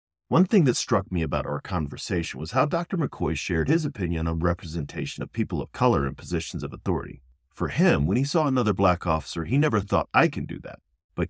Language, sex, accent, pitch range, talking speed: English, male, American, 75-110 Hz, 220 wpm